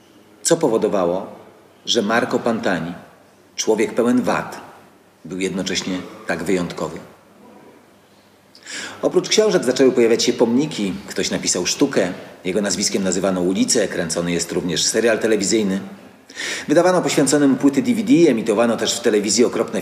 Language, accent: Polish, native